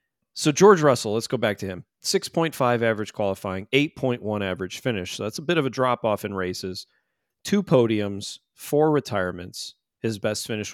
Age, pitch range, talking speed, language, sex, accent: 40-59, 105-130 Hz, 195 wpm, English, male, American